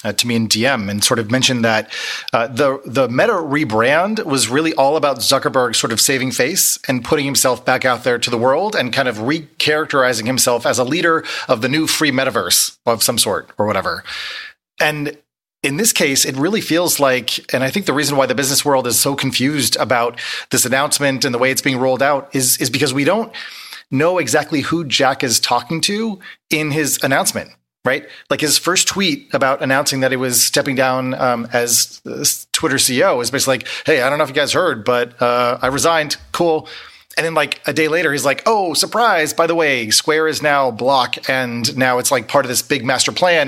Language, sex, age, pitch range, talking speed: English, male, 30-49, 125-150 Hz, 215 wpm